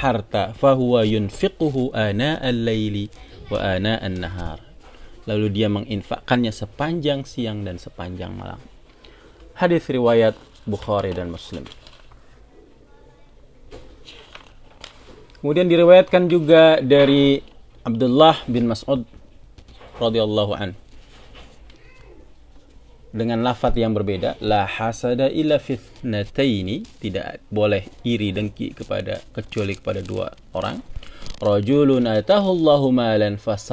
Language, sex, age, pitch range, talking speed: Indonesian, male, 40-59, 105-135 Hz, 85 wpm